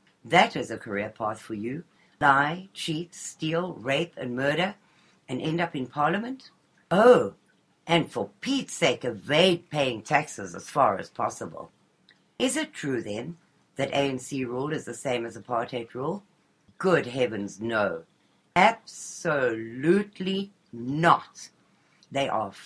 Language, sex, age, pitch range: Japanese, female, 60-79, 120-175 Hz